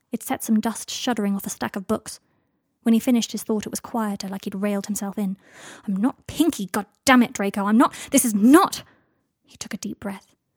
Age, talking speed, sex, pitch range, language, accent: 20-39, 215 wpm, female, 200-235 Hz, English, British